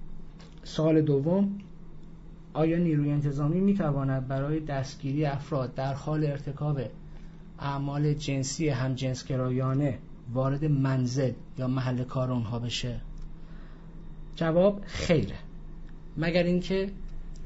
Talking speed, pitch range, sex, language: 100 wpm, 135-170 Hz, male, English